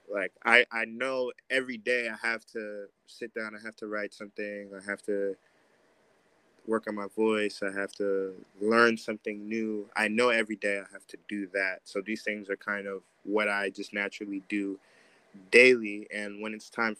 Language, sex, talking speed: English, male, 190 wpm